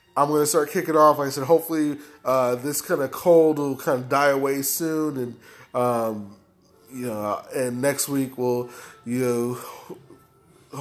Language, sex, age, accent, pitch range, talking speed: English, male, 20-39, American, 125-145 Hz, 170 wpm